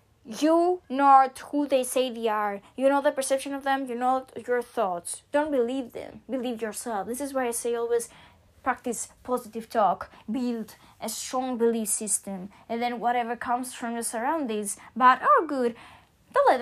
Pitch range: 245-335 Hz